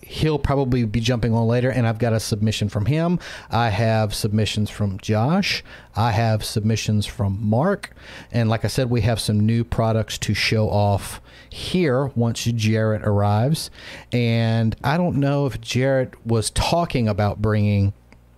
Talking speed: 165 wpm